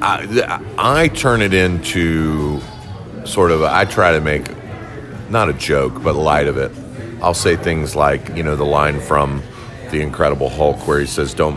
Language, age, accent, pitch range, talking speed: English, 40-59, American, 75-105 Hz, 180 wpm